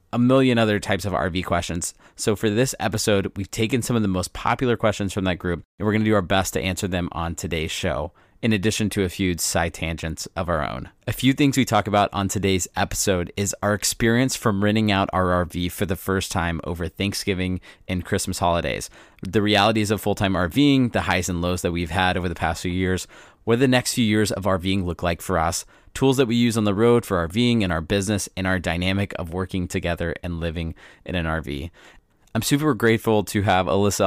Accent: American